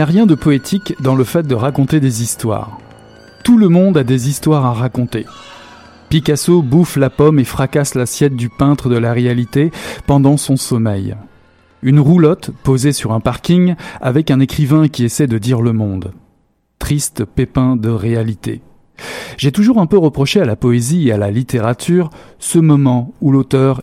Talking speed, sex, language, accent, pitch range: 175 wpm, male, French, French, 115-145 Hz